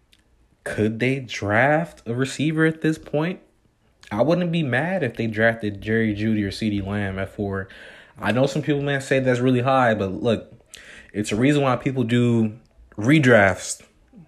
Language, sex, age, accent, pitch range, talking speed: English, male, 20-39, American, 100-135 Hz, 170 wpm